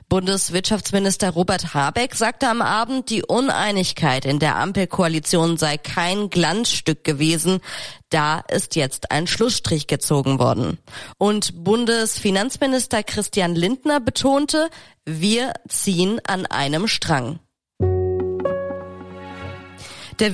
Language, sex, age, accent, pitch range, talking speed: German, female, 30-49, German, 155-220 Hz, 95 wpm